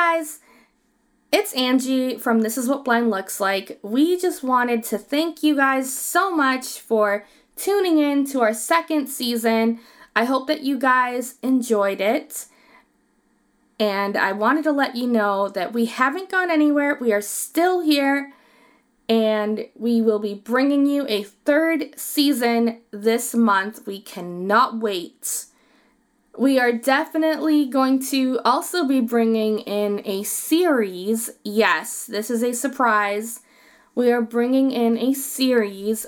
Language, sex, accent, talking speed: English, female, American, 140 wpm